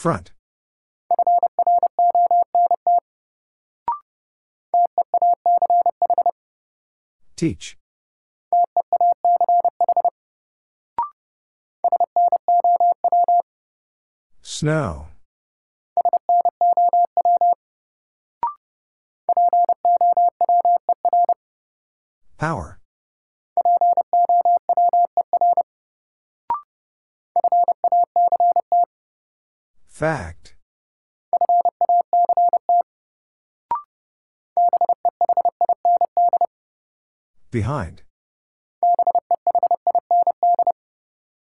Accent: American